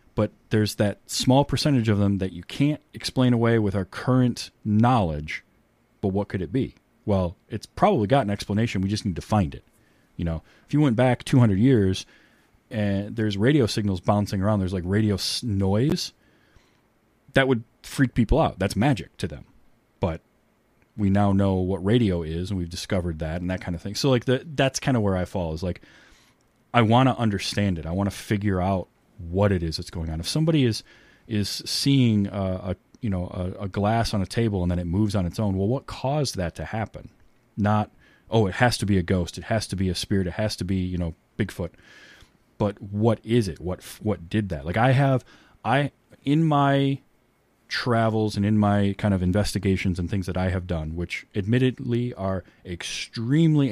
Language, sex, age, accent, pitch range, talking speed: English, male, 30-49, American, 95-120 Hz, 205 wpm